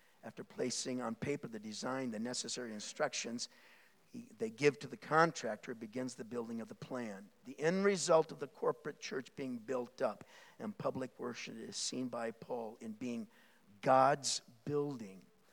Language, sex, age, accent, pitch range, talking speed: English, male, 50-69, American, 135-210 Hz, 160 wpm